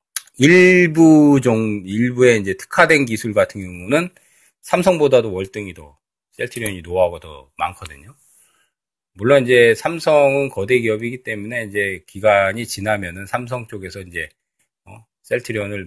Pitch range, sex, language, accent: 95-130 Hz, male, Korean, native